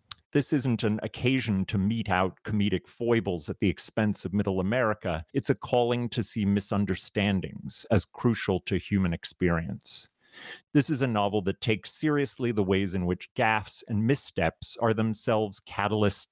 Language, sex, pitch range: English, male, 90-115 Hz